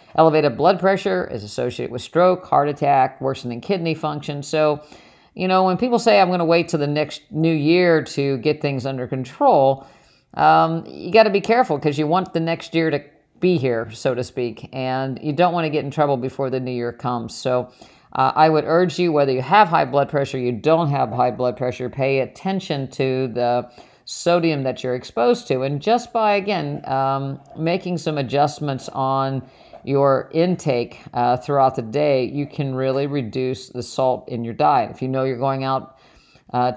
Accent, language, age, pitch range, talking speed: American, English, 50-69, 130-160 Hz, 195 wpm